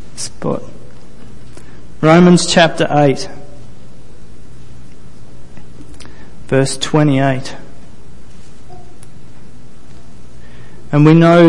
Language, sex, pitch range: English, male, 135-165 Hz